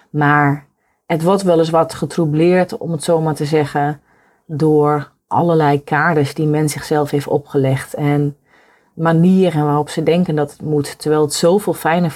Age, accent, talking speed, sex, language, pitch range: 30-49, Dutch, 165 wpm, female, Dutch, 145-165 Hz